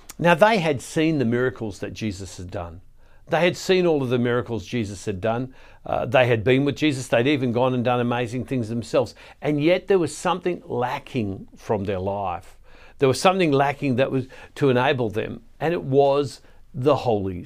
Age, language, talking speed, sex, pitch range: 60-79, English, 195 wpm, male, 125-160 Hz